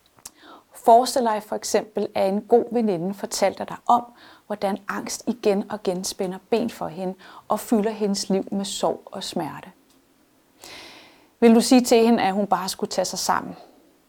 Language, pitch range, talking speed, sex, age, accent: Danish, 195-235 Hz, 170 wpm, female, 30-49, native